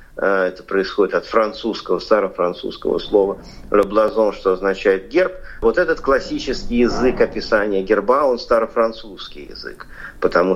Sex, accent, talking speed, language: male, native, 115 wpm, Russian